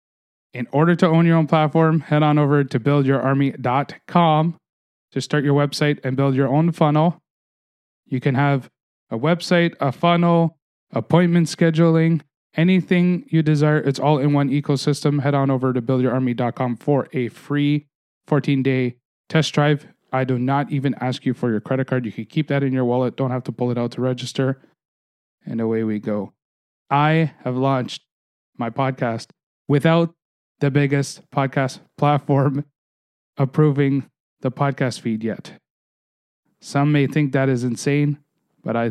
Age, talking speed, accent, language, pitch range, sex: 30-49, 155 wpm, American, English, 120-150 Hz, male